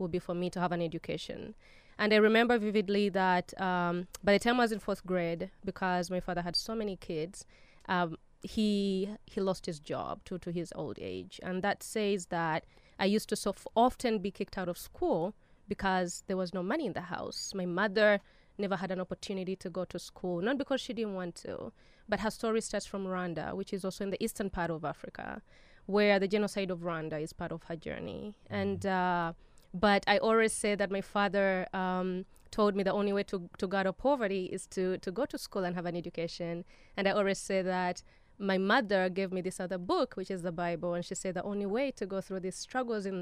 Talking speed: 225 wpm